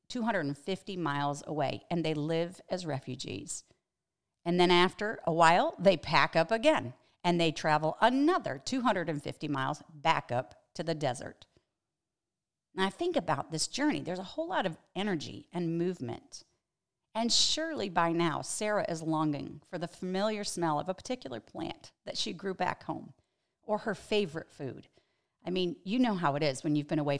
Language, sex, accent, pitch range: English, female, American, 160-230 Hz